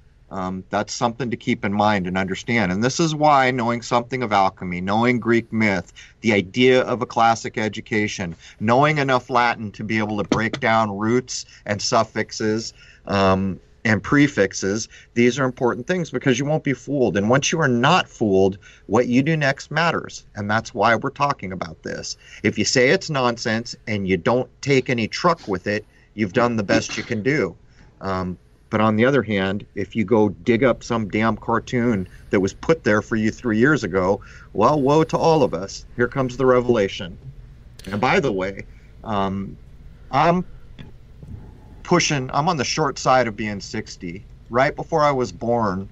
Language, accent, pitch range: English, American, 100-125 Hz